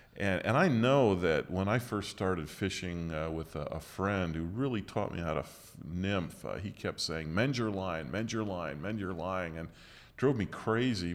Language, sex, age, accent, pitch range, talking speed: English, male, 40-59, American, 80-95 Hz, 215 wpm